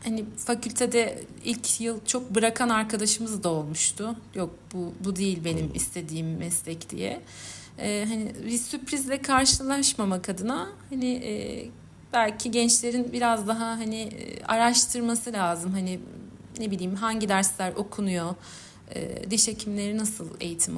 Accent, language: native, Turkish